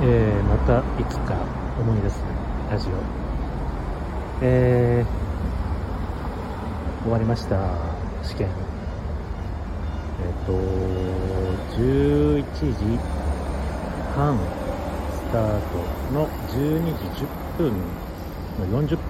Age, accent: 60-79, native